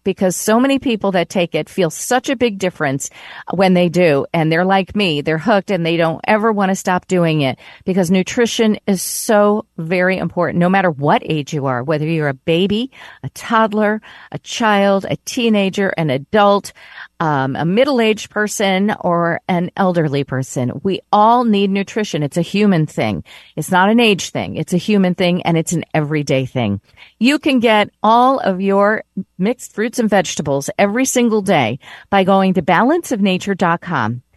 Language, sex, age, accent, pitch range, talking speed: English, female, 40-59, American, 165-210 Hz, 180 wpm